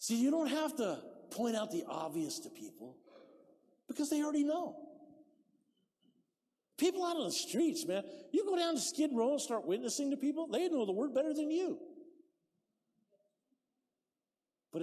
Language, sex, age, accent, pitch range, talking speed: English, male, 50-69, American, 200-310 Hz, 160 wpm